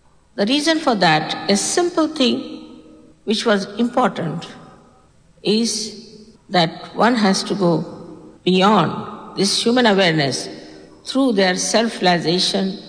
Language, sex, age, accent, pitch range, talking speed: English, female, 50-69, Indian, 180-265 Hz, 105 wpm